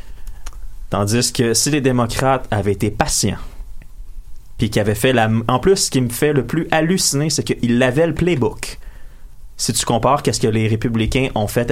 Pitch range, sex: 105-130 Hz, male